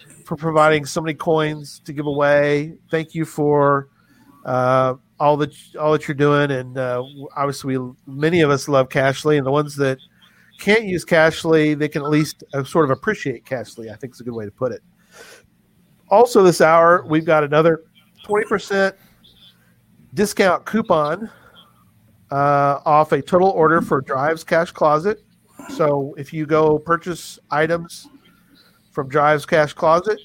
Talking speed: 160 wpm